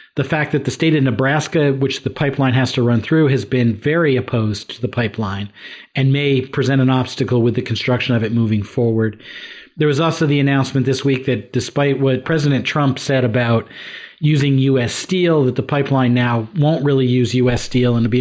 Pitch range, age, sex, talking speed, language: 125-150 Hz, 40-59, male, 205 wpm, English